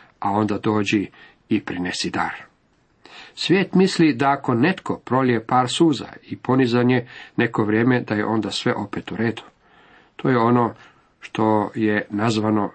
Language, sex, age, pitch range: Croatian, male, 50-69, 105-140 Hz